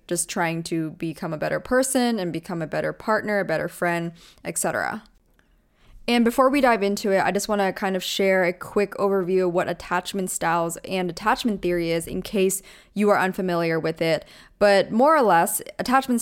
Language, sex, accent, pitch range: English, female, American, 175-210 Hz